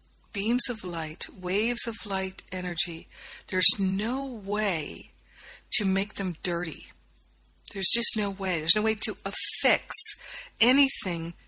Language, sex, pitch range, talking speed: English, female, 175-210 Hz, 125 wpm